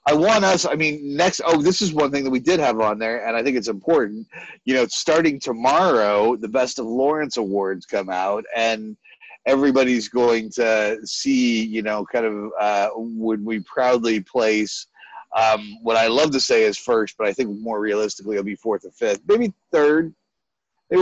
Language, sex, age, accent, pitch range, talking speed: English, male, 30-49, American, 110-150 Hz, 195 wpm